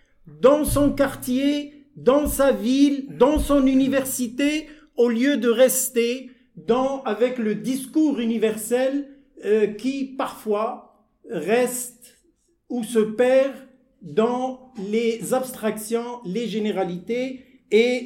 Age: 50-69